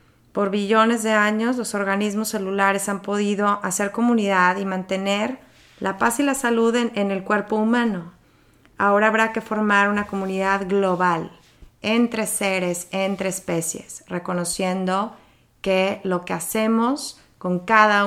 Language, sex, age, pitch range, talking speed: English, female, 30-49, 180-220 Hz, 135 wpm